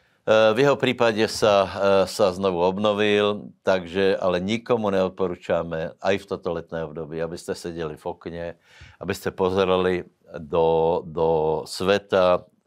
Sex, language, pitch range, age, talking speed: male, Slovak, 85-100 Hz, 60-79, 130 wpm